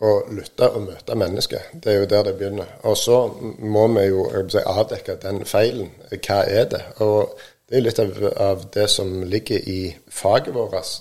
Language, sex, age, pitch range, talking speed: Danish, male, 50-69, 100-120 Hz, 180 wpm